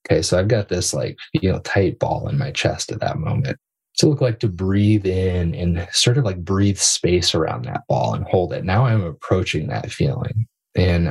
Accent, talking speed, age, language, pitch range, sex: American, 215 wpm, 20-39, English, 85-110 Hz, male